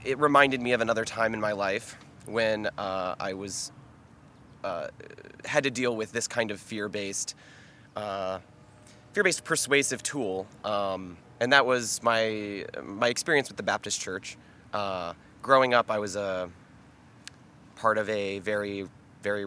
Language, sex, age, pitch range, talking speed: English, male, 20-39, 100-135 Hz, 150 wpm